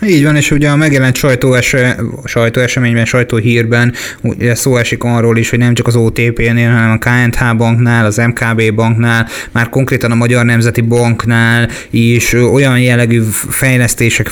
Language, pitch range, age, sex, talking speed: Hungarian, 115-125 Hz, 20-39, male, 150 wpm